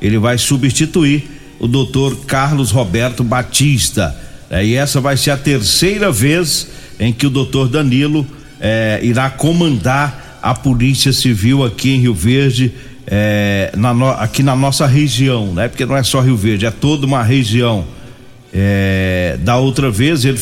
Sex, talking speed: male, 160 wpm